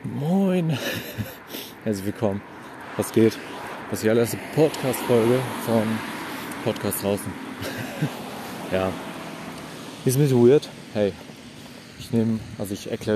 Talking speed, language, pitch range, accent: 110 wpm, German, 100-125 Hz, German